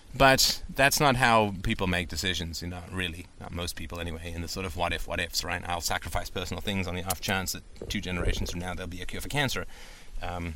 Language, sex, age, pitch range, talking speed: English, male, 30-49, 90-115 Hz, 245 wpm